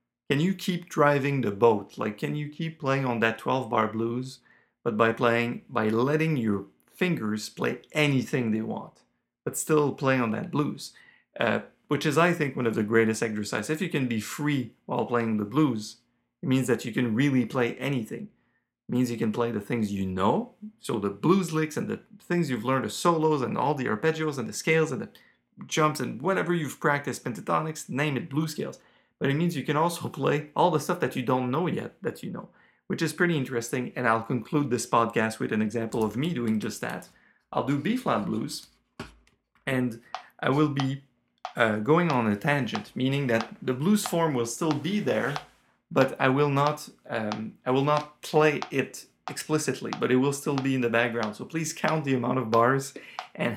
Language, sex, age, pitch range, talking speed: English, male, 40-59, 115-155 Hz, 205 wpm